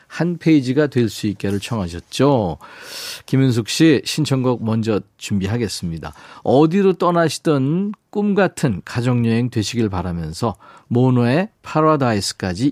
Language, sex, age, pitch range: Korean, male, 40-59, 115-165 Hz